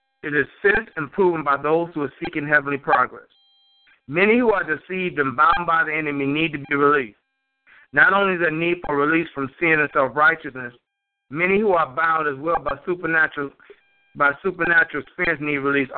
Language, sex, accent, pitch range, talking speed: English, male, American, 145-175 Hz, 180 wpm